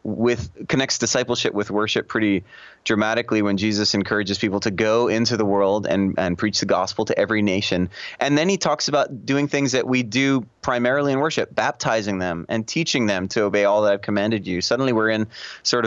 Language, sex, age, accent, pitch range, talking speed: English, male, 20-39, American, 105-135 Hz, 200 wpm